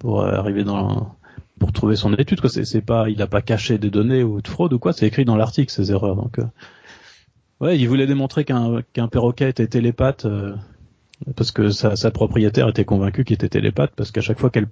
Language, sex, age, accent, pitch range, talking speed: French, male, 30-49, French, 105-125 Hz, 225 wpm